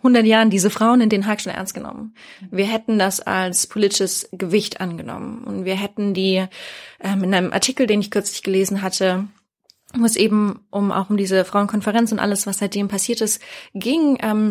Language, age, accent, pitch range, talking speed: German, 20-39, German, 195-230 Hz, 190 wpm